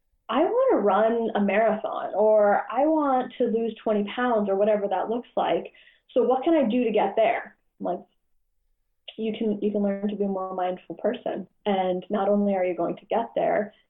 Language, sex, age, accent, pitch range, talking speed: English, female, 10-29, American, 185-220 Hz, 205 wpm